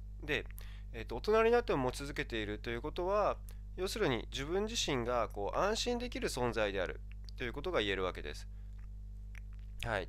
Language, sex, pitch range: Japanese, male, 100-140 Hz